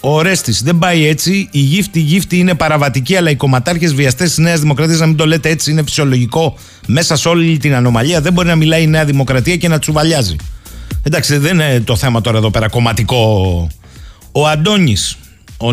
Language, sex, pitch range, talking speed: Greek, male, 130-175 Hz, 195 wpm